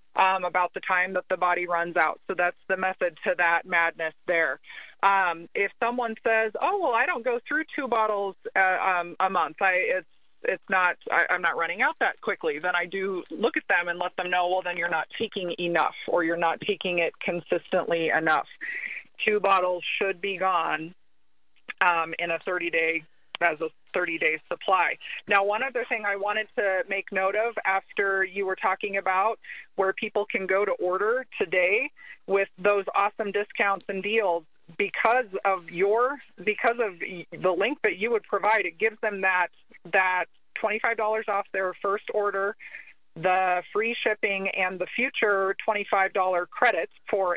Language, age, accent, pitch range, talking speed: English, 30-49, American, 185-225 Hz, 180 wpm